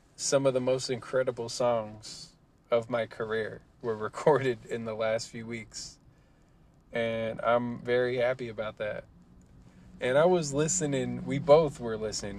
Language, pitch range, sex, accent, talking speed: English, 110-135 Hz, male, American, 145 wpm